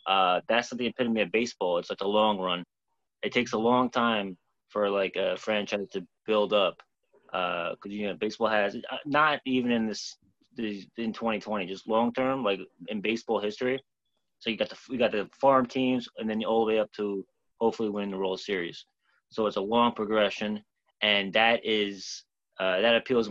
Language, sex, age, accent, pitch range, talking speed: English, male, 30-49, American, 100-120 Hz, 190 wpm